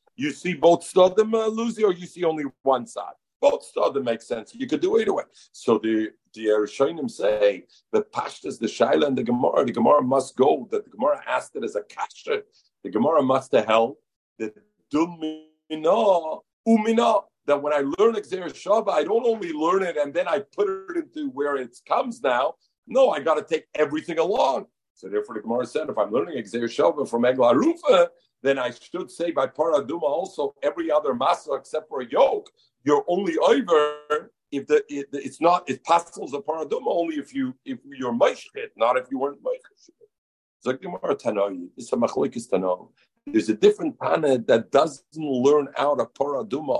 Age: 50-69